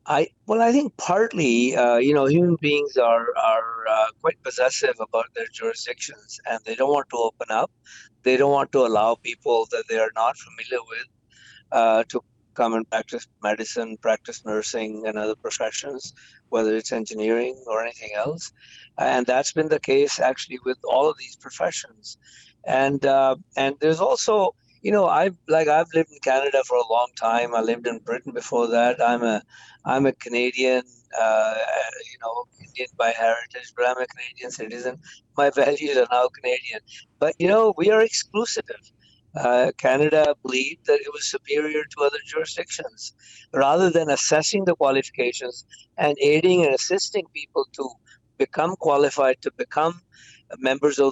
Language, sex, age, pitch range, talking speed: English, male, 60-79, 120-175 Hz, 165 wpm